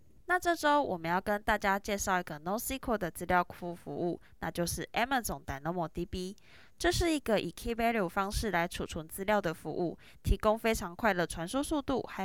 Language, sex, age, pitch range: Chinese, female, 20-39, 185-255 Hz